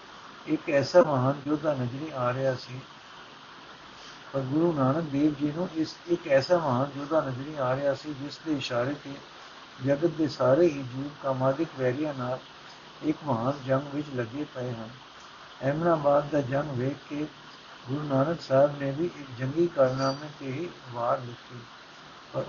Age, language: 60-79, Punjabi